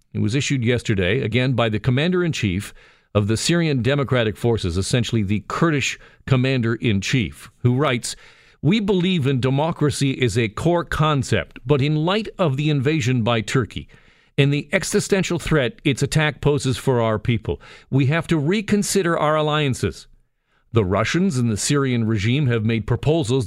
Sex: male